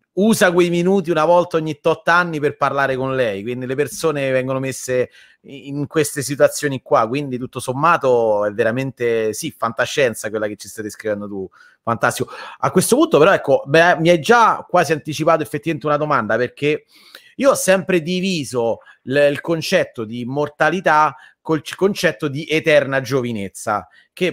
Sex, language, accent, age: male, Italian, native, 30-49